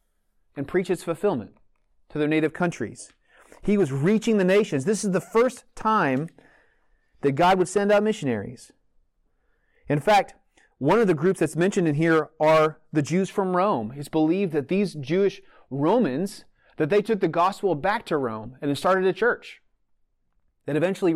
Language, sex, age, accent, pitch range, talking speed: English, male, 30-49, American, 145-195 Hz, 165 wpm